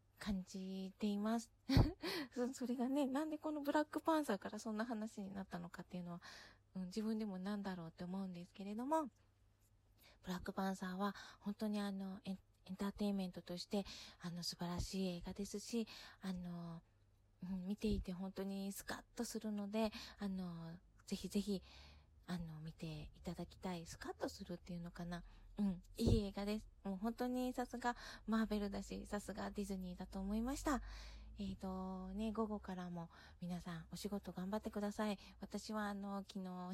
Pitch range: 180-220 Hz